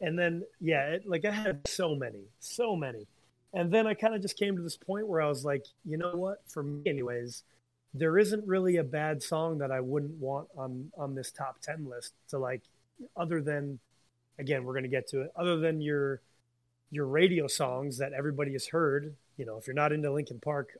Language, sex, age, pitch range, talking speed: English, male, 30-49, 130-165 Hz, 220 wpm